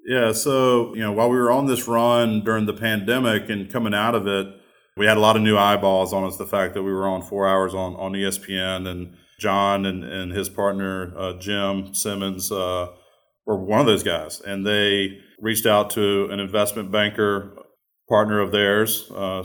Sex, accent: male, American